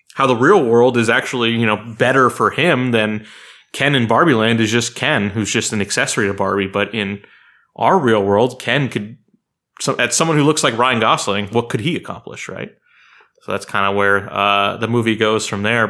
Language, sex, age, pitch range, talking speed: English, male, 30-49, 110-145 Hz, 215 wpm